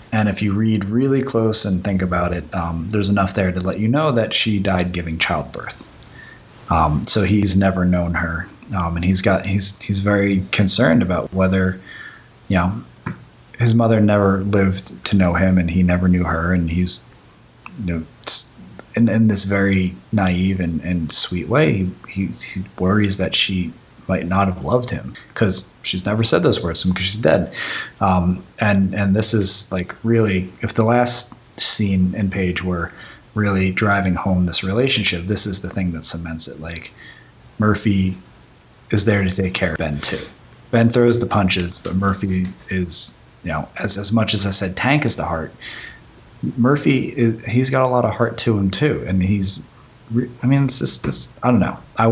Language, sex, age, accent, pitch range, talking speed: English, male, 20-39, American, 90-110 Hz, 185 wpm